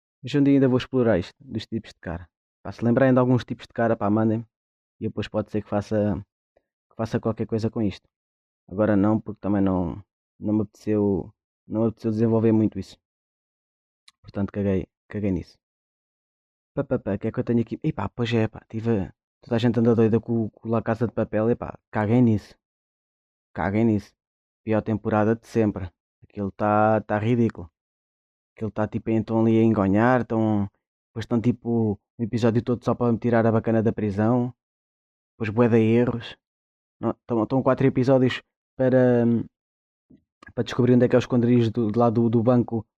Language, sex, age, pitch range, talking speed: Portuguese, male, 20-39, 100-120 Hz, 185 wpm